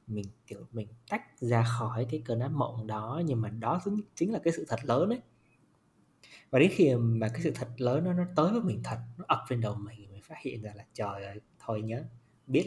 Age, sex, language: 20-39, male, Vietnamese